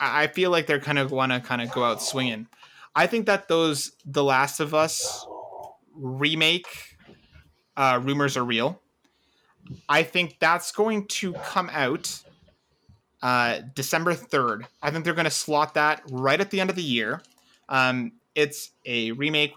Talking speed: 165 wpm